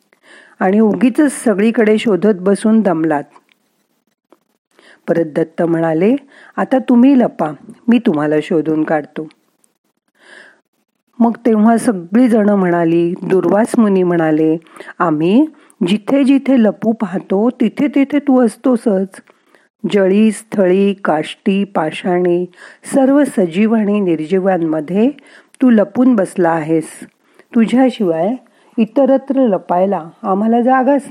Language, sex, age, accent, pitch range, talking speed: Marathi, female, 40-59, native, 180-250 Hz, 95 wpm